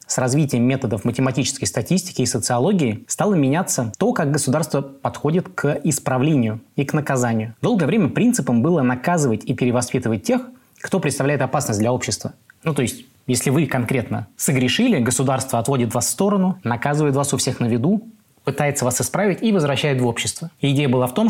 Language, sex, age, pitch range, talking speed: Russian, male, 20-39, 125-155 Hz, 170 wpm